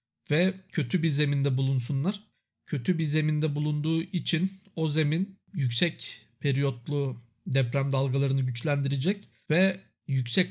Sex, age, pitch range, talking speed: male, 50-69, 140-165 Hz, 110 wpm